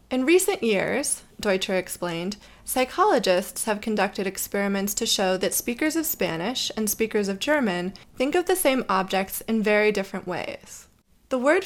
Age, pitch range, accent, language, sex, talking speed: 20-39, 195-260 Hz, American, English, female, 155 wpm